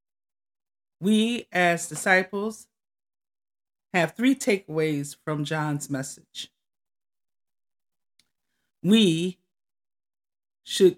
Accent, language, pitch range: American, English, 155-205 Hz